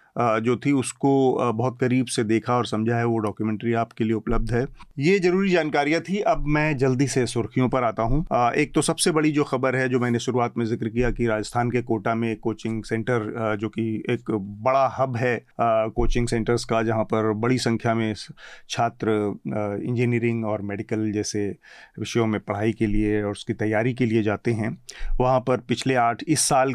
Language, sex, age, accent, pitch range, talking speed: Hindi, male, 40-59, native, 115-135 Hz, 190 wpm